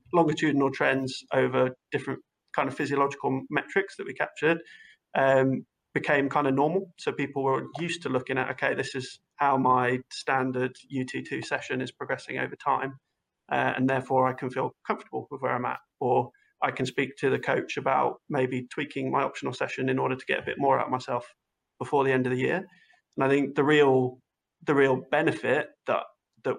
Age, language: 30-49, English